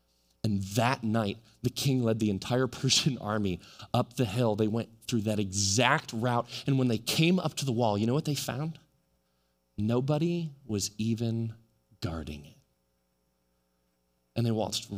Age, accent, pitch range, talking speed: 20-39, American, 110-170 Hz, 160 wpm